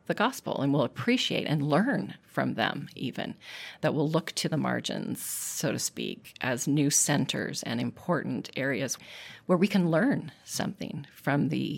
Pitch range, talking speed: 145-190 Hz, 165 wpm